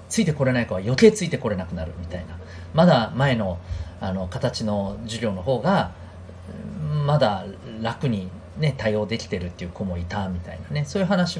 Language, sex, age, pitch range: Japanese, male, 40-59, 90-130 Hz